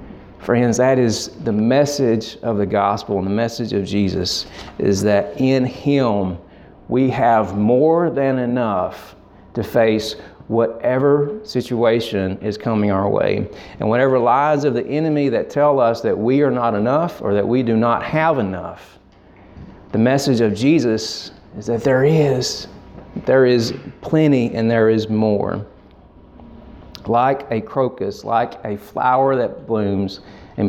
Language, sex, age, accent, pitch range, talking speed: Bengali, male, 40-59, American, 100-125 Hz, 145 wpm